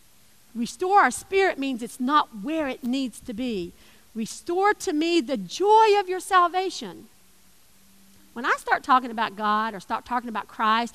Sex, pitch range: female, 265-365 Hz